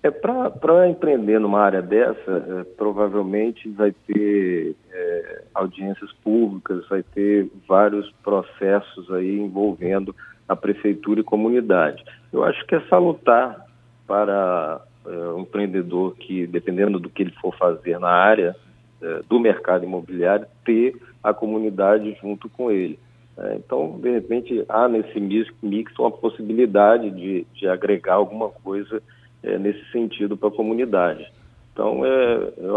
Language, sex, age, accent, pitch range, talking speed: Portuguese, male, 40-59, Brazilian, 100-120 Hz, 135 wpm